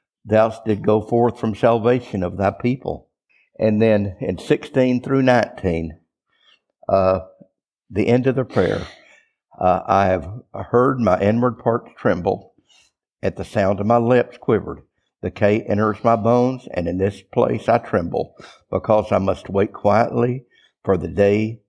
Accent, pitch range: American, 100-120 Hz